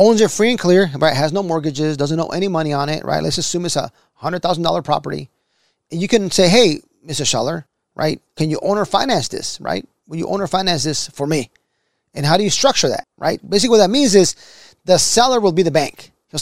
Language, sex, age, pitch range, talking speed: English, male, 30-49, 150-195 Hz, 235 wpm